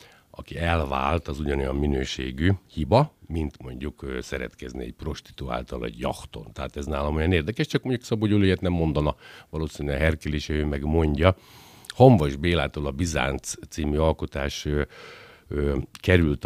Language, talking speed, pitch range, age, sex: Hungarian, 145 wpm, 70-90 Hz, 60-79, male